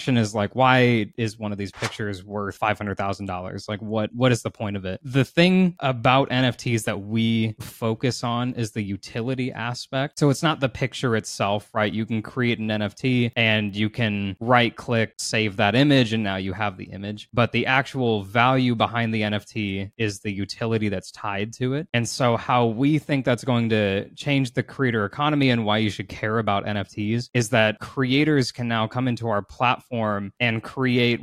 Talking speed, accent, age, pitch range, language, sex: 190 wpm, American, 20-39, 105-125 Hz, English, male